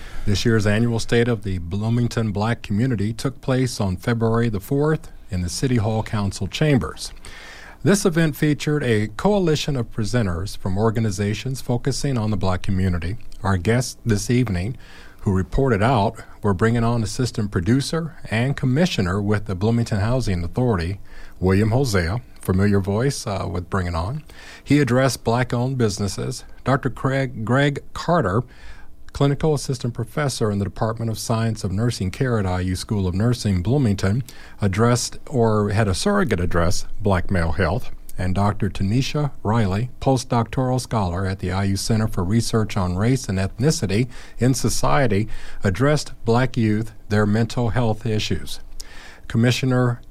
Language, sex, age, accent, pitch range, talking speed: English, male, 40-59, American, 100-125 Hz, 145 wpm